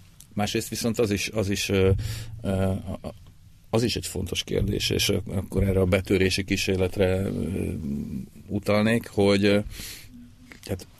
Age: 40-59